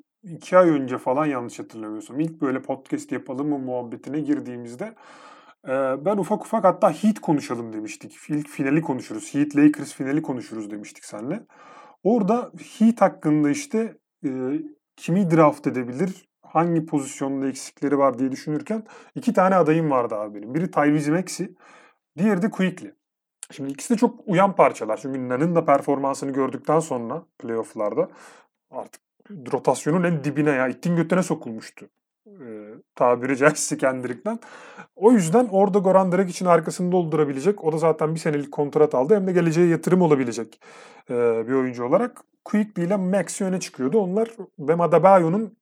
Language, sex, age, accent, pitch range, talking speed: Turkish, male, 30-49, native, 135-190 Hz, 145 wpm